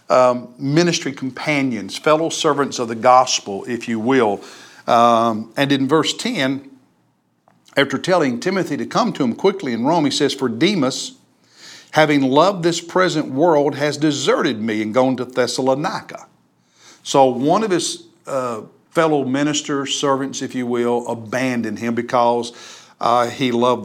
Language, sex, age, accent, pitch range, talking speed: English, male, 60-79, American, 120-150 Hz, 150 wpm